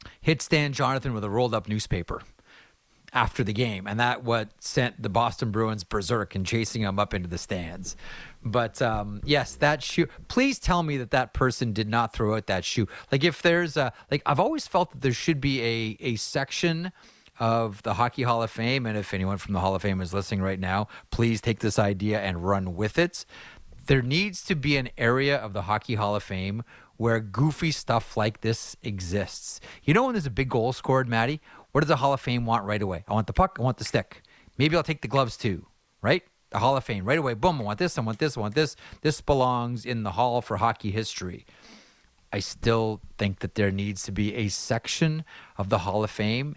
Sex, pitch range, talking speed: male, 105-135 Hz, 225 wpm